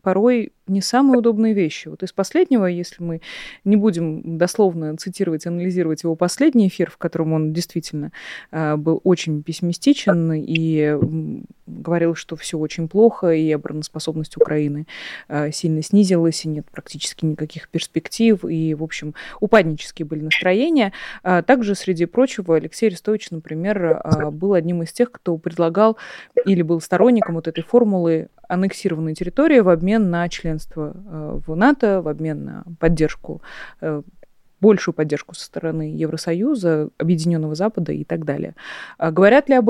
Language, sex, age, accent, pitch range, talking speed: Russian, female, 20-39, native, 160-200 Hz, 145 wpm